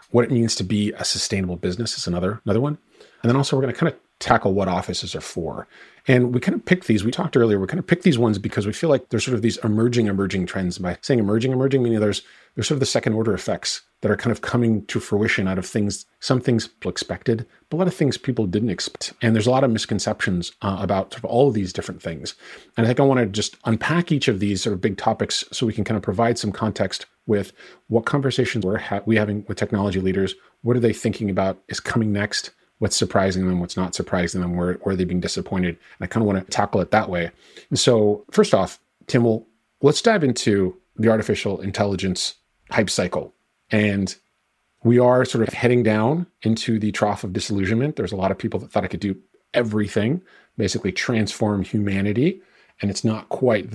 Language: English